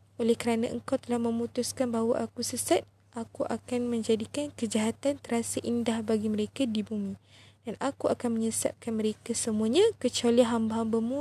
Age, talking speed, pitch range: 20-39, 140 wpm, 210-245 Hz